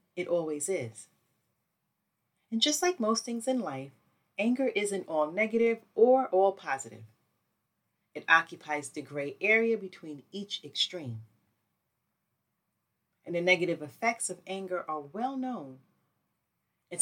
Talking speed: 125 wpm